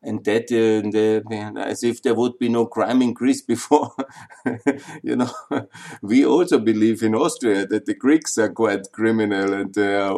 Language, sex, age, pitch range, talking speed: German, male, 50-69, 95-120 Hz, 170 wpm